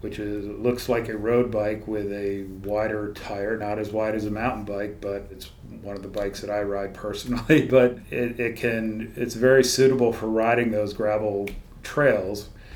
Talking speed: 190 wpm